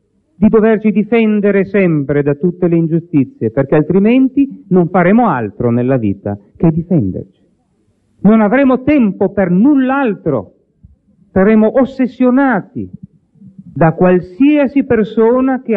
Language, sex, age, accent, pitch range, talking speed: Italian, male, 50-69, native, 165-220 Hz, 105 wpm